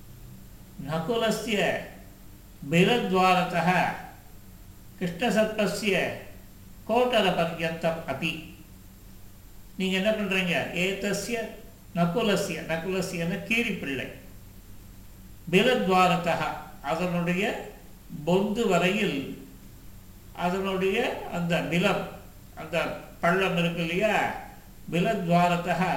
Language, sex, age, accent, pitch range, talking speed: Tamil, male, 60-79, native, 130-195 Hz, 55 wpm